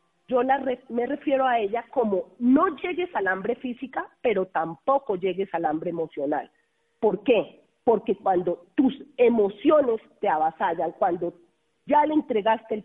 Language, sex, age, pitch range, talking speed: Spanish, female, 40-59, 205-290 Hz, 140 wpm